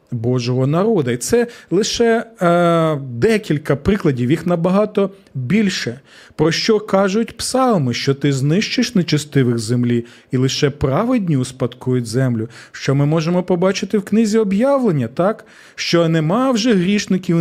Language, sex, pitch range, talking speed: Ukrainian, male, 135-200 Hz, 130 wpm